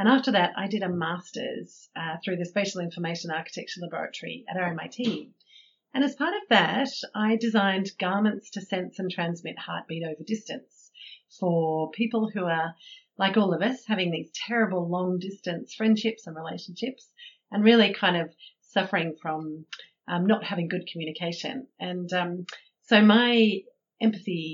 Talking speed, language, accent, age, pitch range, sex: 150 wpm, English, Australian, 40-59, 170-220 Hz, female